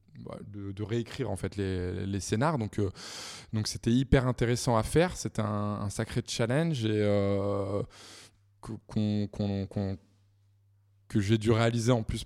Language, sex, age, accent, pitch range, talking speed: French, male, 20-39, French, 105-140 Hz, 155 wpm